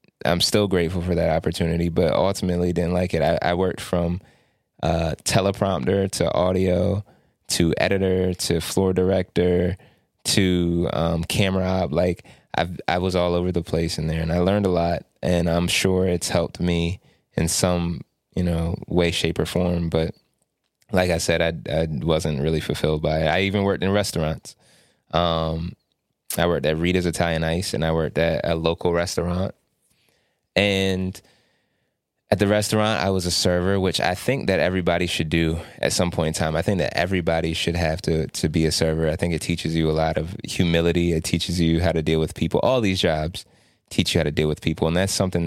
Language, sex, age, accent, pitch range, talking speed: English, male, 20-39, American, 80-95 Hz, 195 wpm